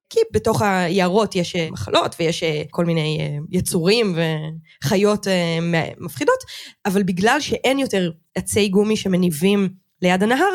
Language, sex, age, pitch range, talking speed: Hebrew, female, 20-39, 175-215 Hz, 115 wpm